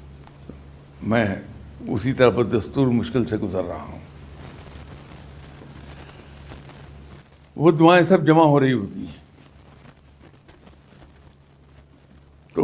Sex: male